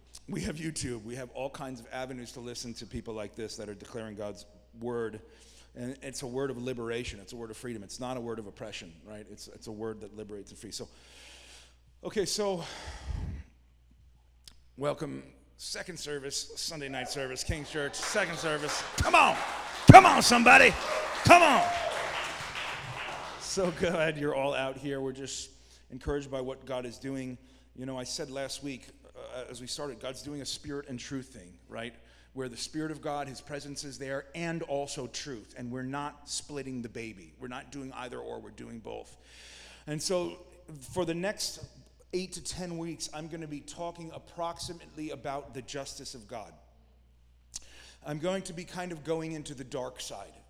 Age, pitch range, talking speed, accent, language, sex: 30-49, 115-150 Hz, 185 wpm, American, English, male